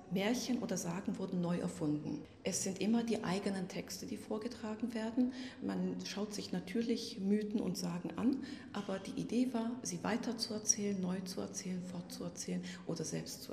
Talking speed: 160 wpm